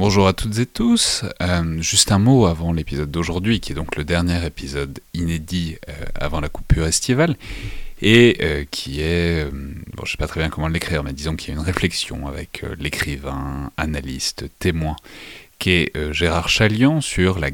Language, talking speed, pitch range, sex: French, 195 wpm, 75-95 Hz, male